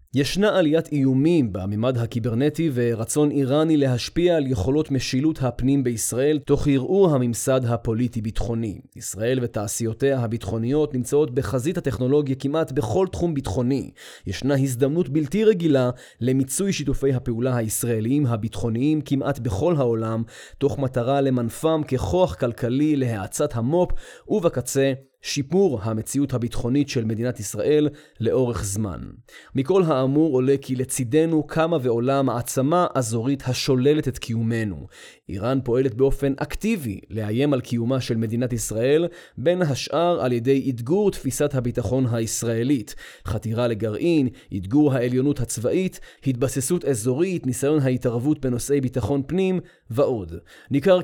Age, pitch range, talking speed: 30-49, 120-150 Hz, 115 wpm